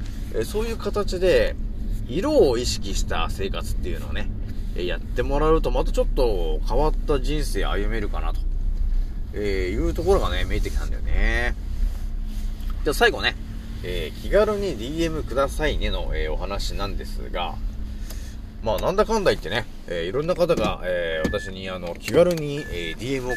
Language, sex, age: Japanese, male, 30-49